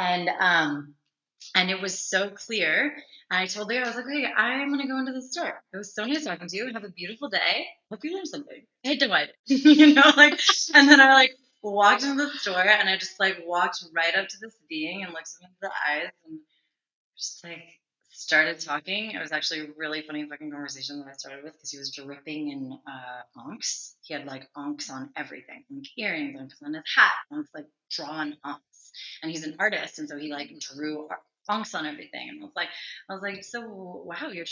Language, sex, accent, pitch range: English, female, American, 165-230 Hz